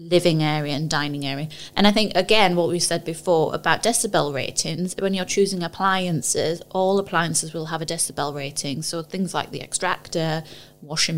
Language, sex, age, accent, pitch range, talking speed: English, female, 20-39, British, 155-185 Hz, 175 wpm